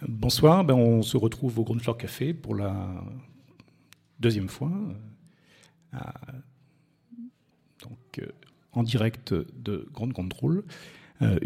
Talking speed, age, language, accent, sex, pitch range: 110 wpm, 50-69, French, French, male, 105-135 Hz